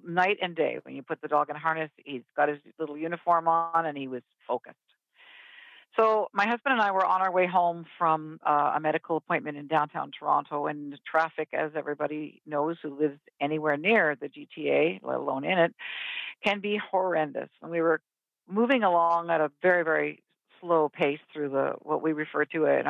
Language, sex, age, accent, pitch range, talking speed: English, female, 50-69, American, 155-190 Hz, 195 wpm